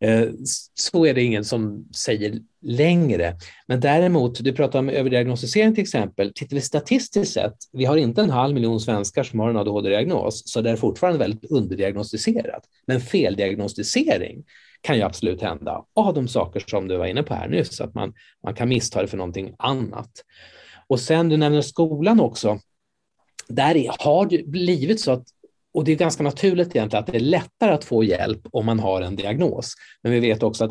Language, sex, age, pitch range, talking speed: Swedish, male, 30-49, 110-165 Hz, 190 wpm